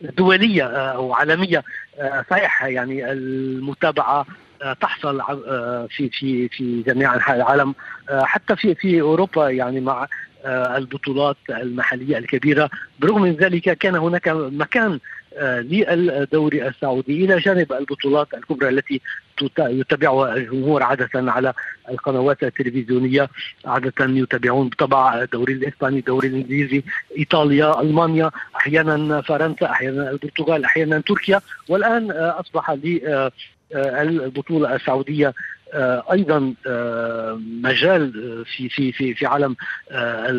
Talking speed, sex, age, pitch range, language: 105 wpm, male, 50-69, 130-160 Hz, Arabic